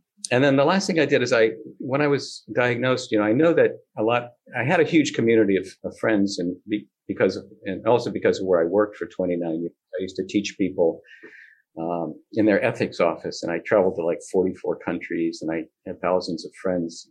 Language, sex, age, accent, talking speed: English, male, 50-69, American, 230 wpm